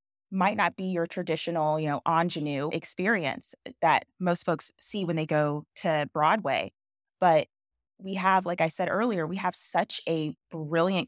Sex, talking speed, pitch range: female, 160 wpm, 155-185 Hz